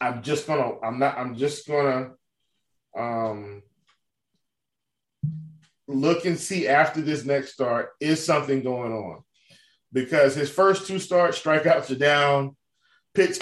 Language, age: English, 20-39